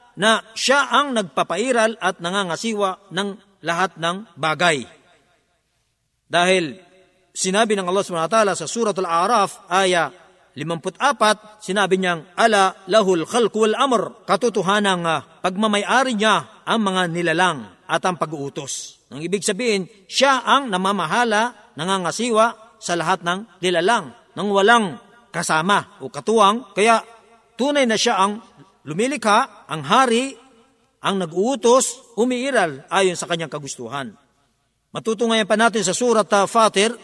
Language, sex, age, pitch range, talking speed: Filipino, male, 50-69, 180-235 Hz, 120 wpm